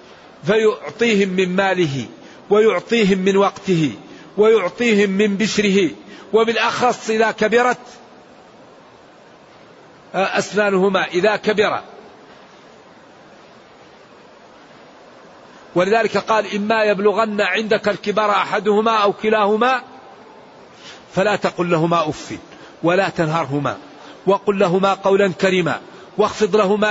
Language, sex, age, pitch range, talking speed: English, male, 50-69, 185-215 Hz, 80 wpm